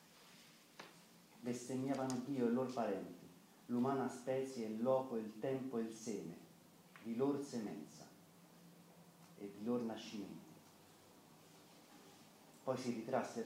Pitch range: 110-135 Hz